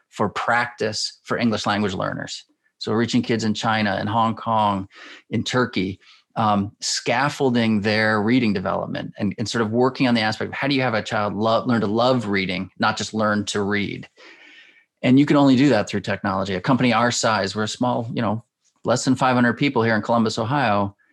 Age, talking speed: 30-49, 195 wpm